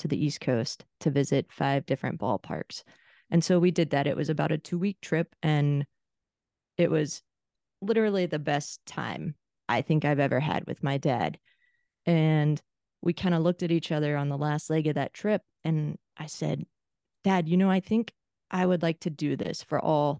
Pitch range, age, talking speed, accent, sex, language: 150-175 Hz, 20-39, 195 wpm, American, female, English